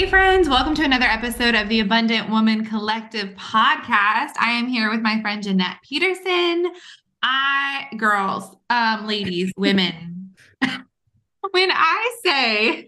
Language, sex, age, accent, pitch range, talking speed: English, female, 20-39, American, 205-275 Hz, 130 wpm